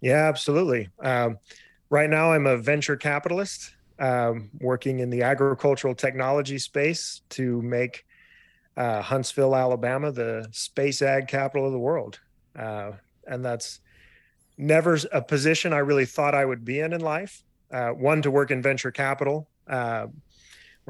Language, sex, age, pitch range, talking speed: English, male, 30-49, 115-140 Hz, 145 wpm